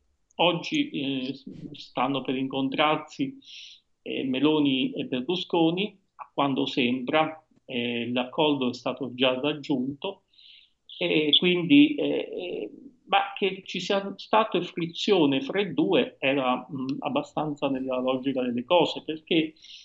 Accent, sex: native, male